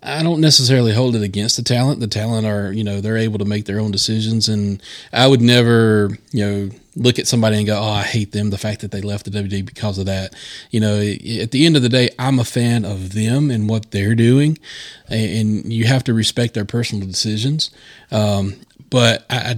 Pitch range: 105-125 Hz